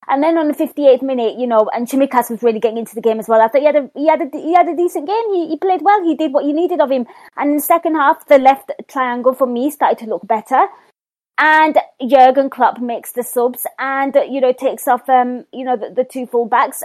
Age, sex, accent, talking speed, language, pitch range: 20-39, female, British, 265 wpm, English, 240-300 Hz